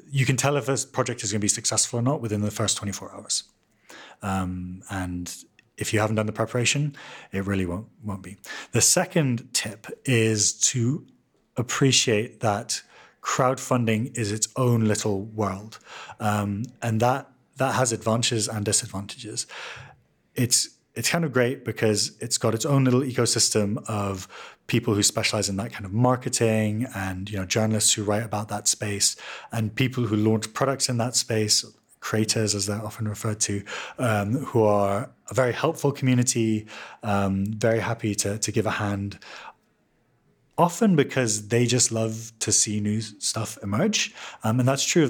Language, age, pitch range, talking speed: English, 30-49, 105-125 Hz, 170 wpm